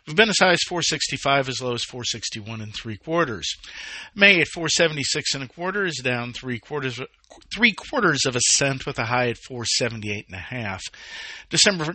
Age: 50-69